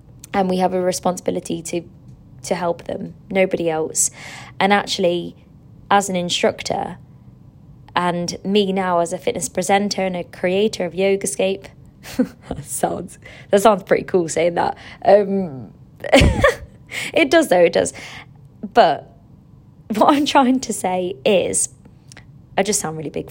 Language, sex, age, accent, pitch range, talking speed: English, female, 20-39, British, 160-200 Hz, 140 wpm